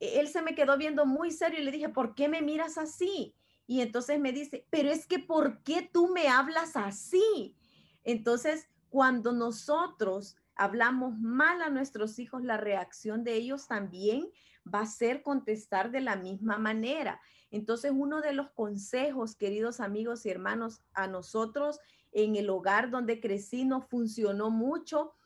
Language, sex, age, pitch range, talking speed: Spanish, female, 30-49, 225-290 Hz, 160 wpm